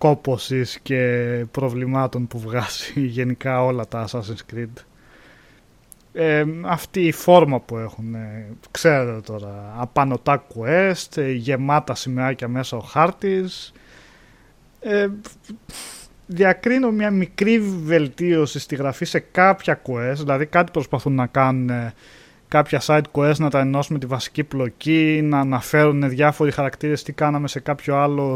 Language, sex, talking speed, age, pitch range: Greek, male, 125 wpm, 20-39, 120-160 Hz